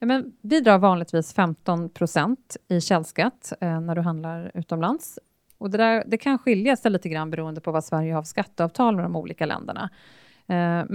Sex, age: female, 30-49